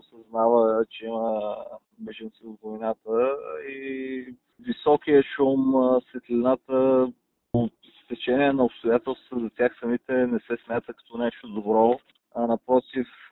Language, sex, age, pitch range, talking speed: Bulgarian, male, 20-39, 115-130 Hz, 115 wpm